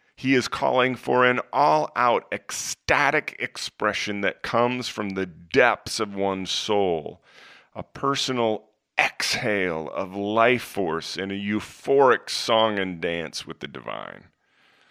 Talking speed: 125 wpm